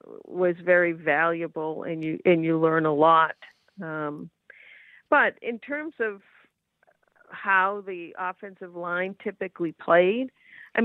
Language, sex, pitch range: English, female, 175-215 Hz